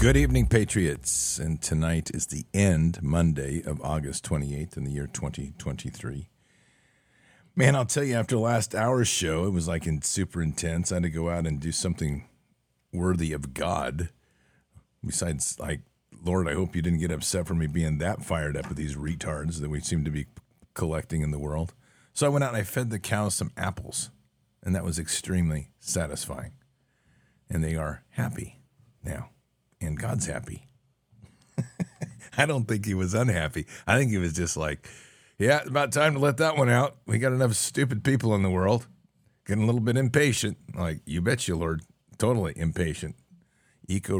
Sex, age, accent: male, 50-69, American